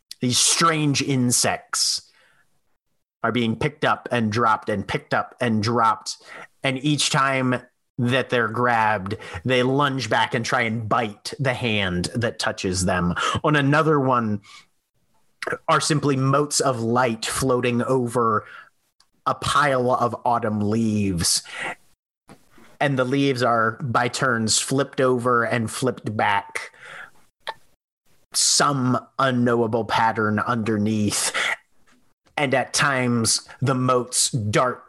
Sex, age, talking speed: male, 30-49, 115 wpm